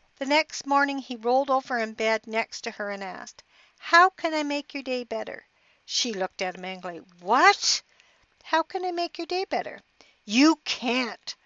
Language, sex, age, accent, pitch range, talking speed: English, female, 60-79, American, 210-260 Hz, 185 wpm